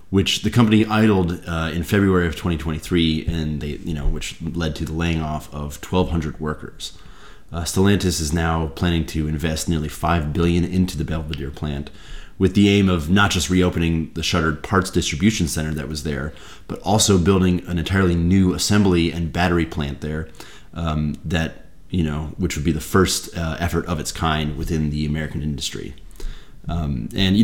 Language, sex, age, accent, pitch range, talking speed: English, male, 30-49, American, 80-90 Hz, 180 wpm